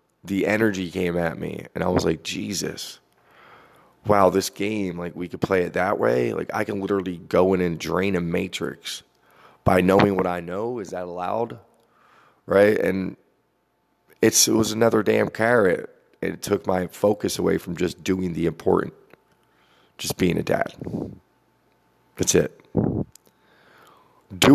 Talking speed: 150 wpm